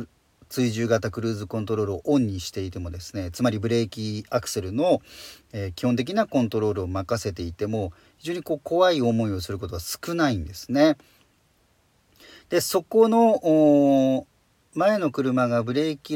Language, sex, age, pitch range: Japanese, male, 40-59, 105-145 Hz